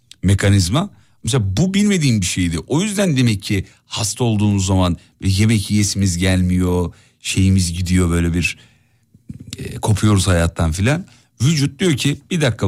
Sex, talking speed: male, 135 wpm